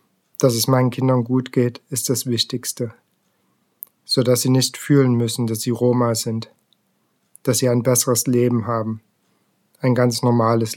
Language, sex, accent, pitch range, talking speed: German, male, German, 115-125 Hz, 155 wpm